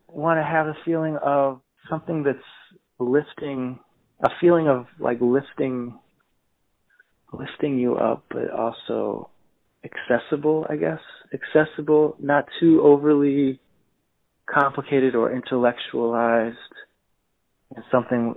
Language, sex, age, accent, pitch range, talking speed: English, male, 30-49, American, 110-145 Hz, 100 wpm